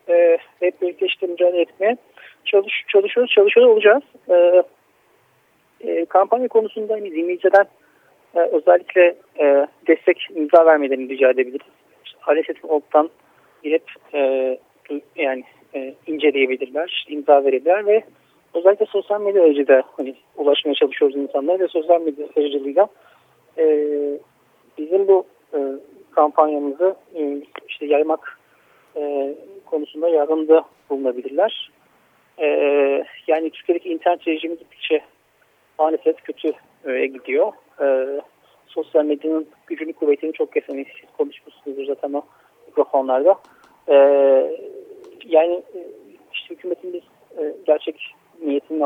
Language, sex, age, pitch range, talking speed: Turkish, male, 40-59, 140-185 Hz, 105 wpm